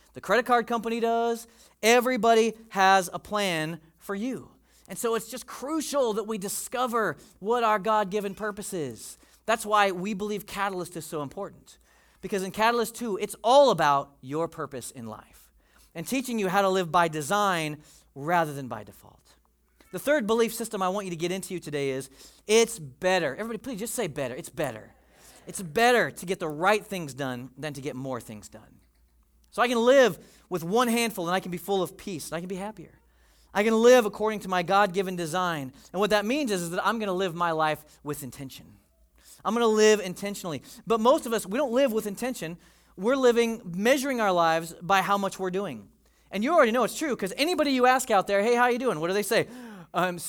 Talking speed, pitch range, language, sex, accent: 210 wpm, 155-225 Hz, English, male, American